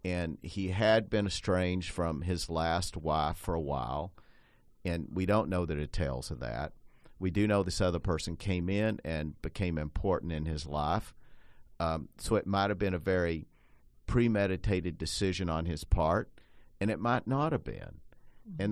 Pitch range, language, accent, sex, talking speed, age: 80-100 Hz, English, American, male, 175 wpm, 50-69